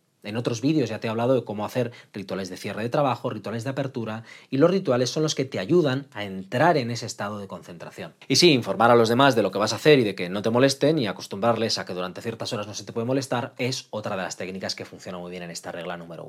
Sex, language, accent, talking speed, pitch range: male, Spanish, Spanish, 280 wpm, 115-155 Hz